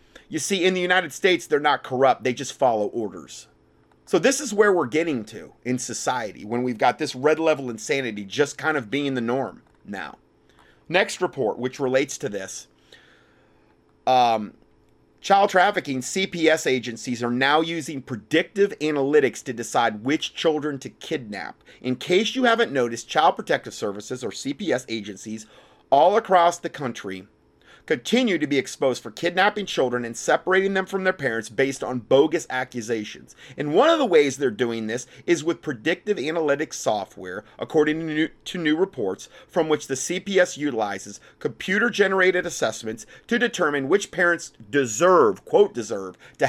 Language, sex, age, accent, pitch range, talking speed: English, male, 30-49, American, 125-180 Hz, 155 wpm